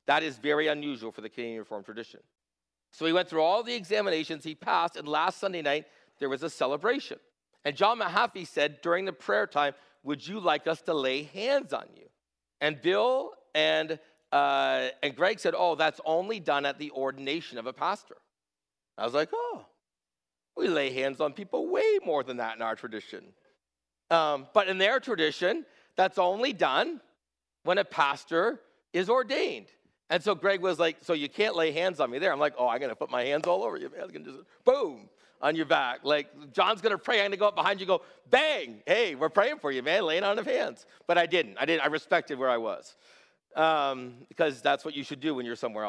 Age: 50-69